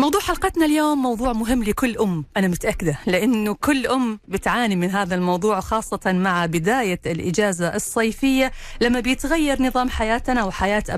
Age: 40-59